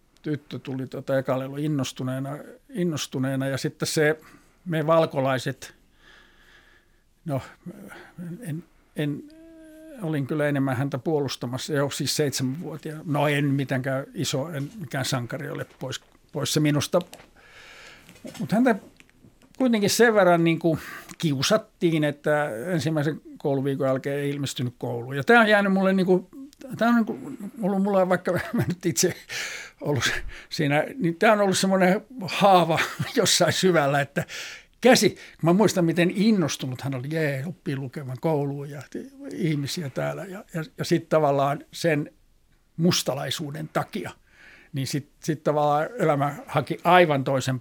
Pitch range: 140-185 Hz